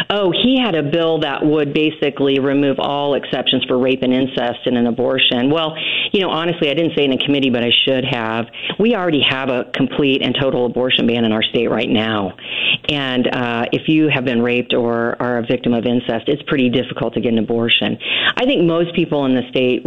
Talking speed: 220 wpm